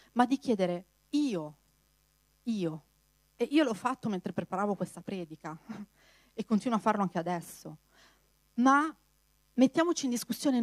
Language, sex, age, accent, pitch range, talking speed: Italian, female, 40-59, native, 175-225 Hz, 130 wpm